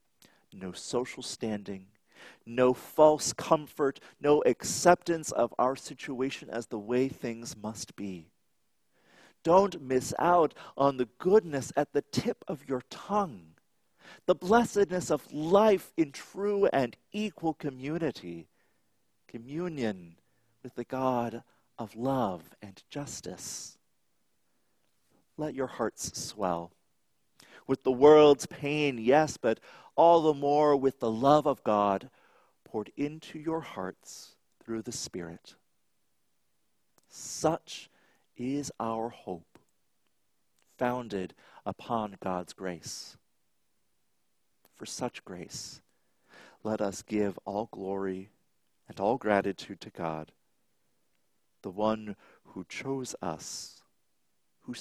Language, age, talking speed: English, 40-59, 105 wpm